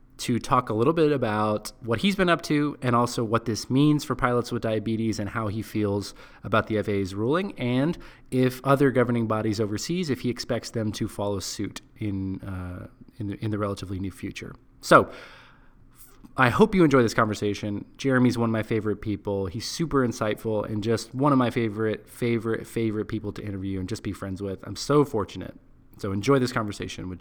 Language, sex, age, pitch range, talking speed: English, male, 20-39, 105-135 Hz, 200 wpm